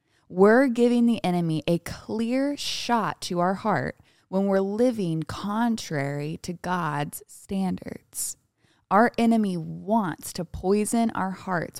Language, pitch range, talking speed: English, 175-225 Hz, 120 wpm